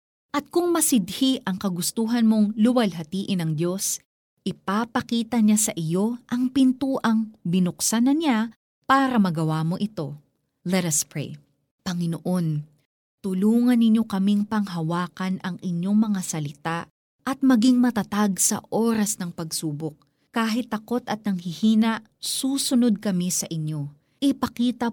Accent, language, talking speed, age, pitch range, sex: native, Filipino, 120 wpm, 20-39, 170-240 Hz, female